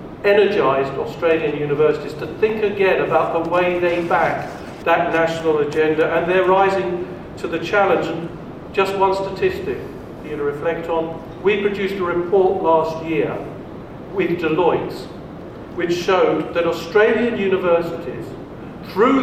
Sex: male